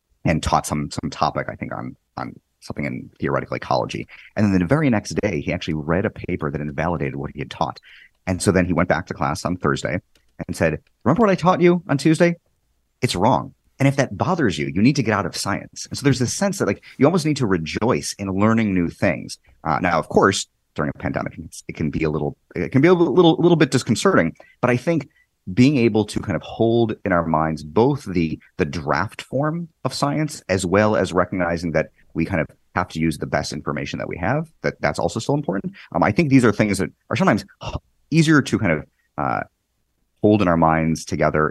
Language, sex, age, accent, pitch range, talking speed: English, male, 30-49, American, 80-130 Hz, 230 wpm